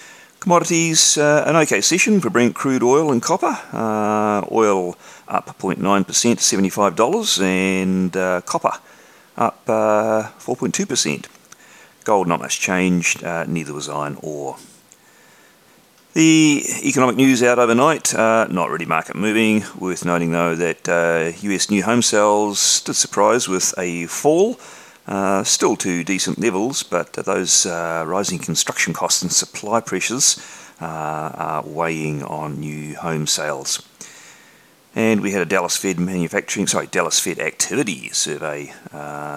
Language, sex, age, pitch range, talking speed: English, male, 40-59, 80-110 Hz, 135 wpm